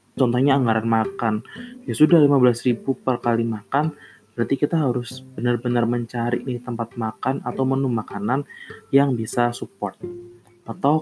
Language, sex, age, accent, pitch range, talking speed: Indonesian, male, 20-39, native, 115-145 Hz, 135 wpm